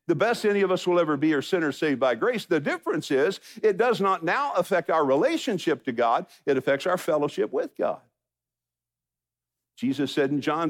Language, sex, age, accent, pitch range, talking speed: English, male, 50-69, American, 140-205 Hz, 195 wpm